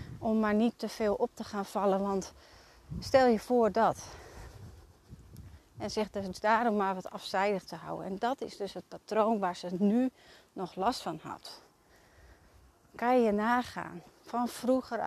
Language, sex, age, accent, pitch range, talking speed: Dutch, female, 30-49, Dutch, 195-235 Hz, 165 wpm